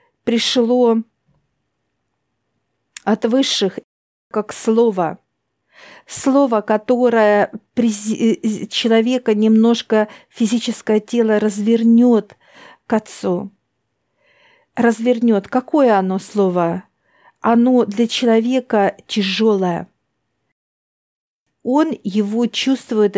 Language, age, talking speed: Russian, 50-69, 65 wpm